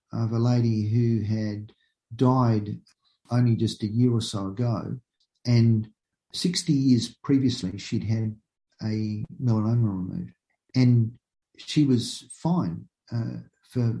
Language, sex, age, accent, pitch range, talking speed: English, male, 50-69, Australian, 110-135 Hz, 120 wpm